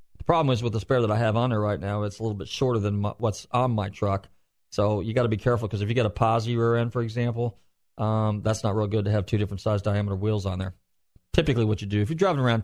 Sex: male